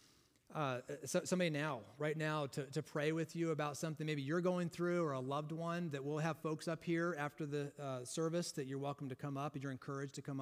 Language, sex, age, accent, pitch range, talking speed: English, male, 30-49, American, 140-170 Hz, 240 wpm